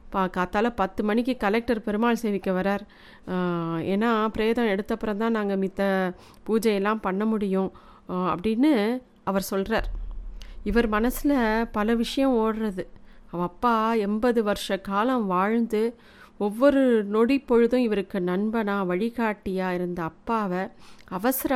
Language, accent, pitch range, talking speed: Tamil, native, 205-250 Hz, 105 wpm